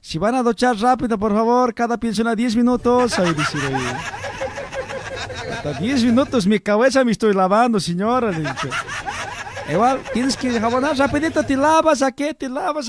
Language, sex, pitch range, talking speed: Spanish, male, 225-280 Hz, 160 wpm